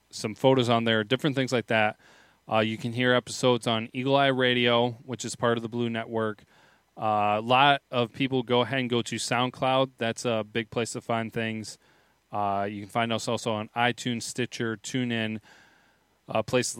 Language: English